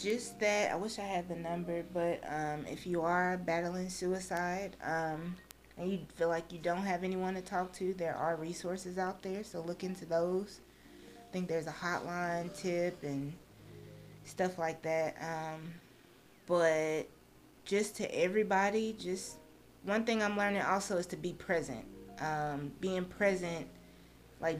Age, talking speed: 20-39, 160 wpm